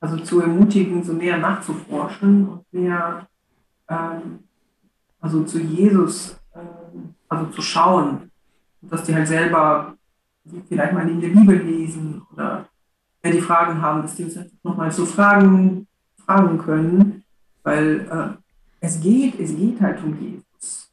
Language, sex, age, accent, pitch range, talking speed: German, female, 50-69, German, 165-190 Hz, 140 wpm